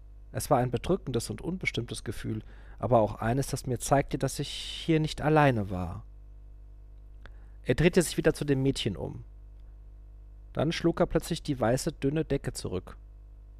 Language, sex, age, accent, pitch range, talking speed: German, male, 40-59, German, 100-140 Hz, 160 wpm